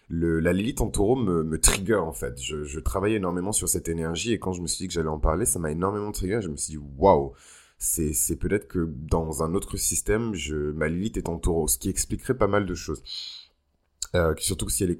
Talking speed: 250 wpm